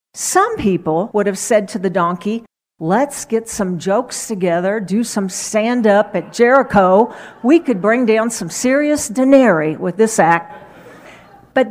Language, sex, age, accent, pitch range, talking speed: English, female, 50-69, American, 190-260 Hz, 150 wpm